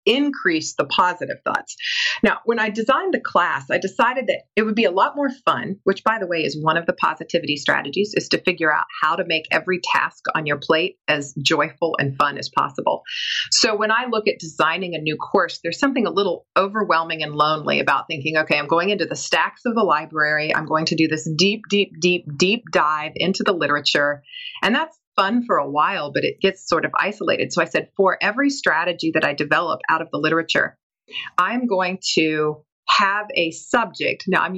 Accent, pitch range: American, 160-225 Hz